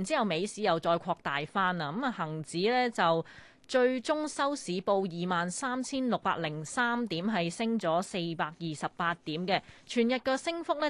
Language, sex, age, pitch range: Chinese, female, 20-39, 170-225 Hz